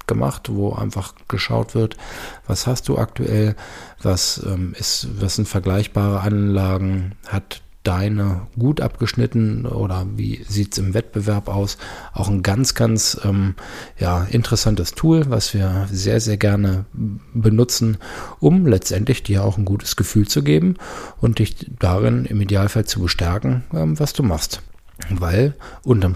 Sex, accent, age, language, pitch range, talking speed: male, German, 50-69, German, 95-110 Hz, 135 wpm